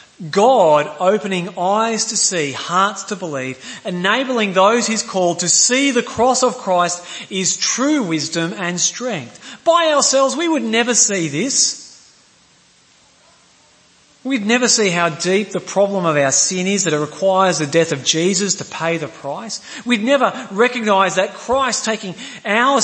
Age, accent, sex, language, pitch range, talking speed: 30-49, Australian, male, English, 175-245 Hz, 155 wpm